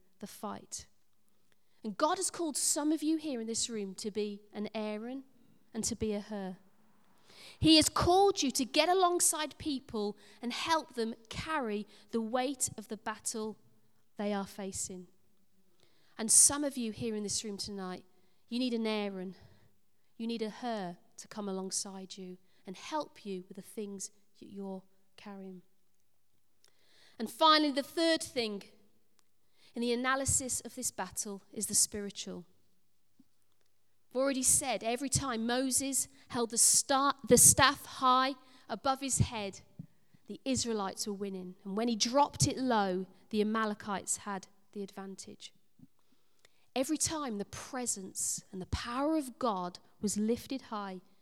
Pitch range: 195-255 Hz